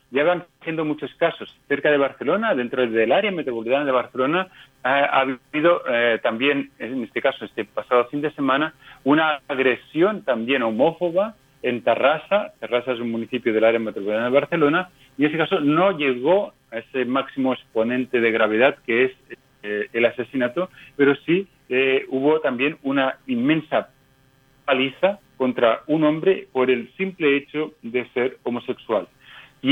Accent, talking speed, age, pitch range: Spanish, 155 wpm, 40-59, 125-155 Hz